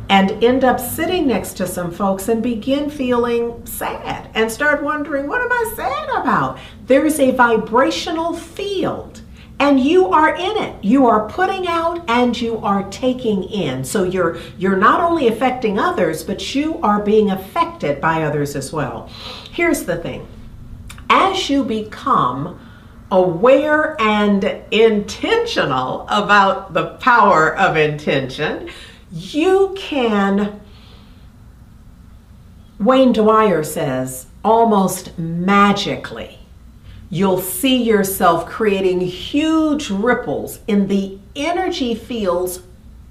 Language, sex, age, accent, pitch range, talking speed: English, female, 50-69, American, 190-275 Hz, 120 wpm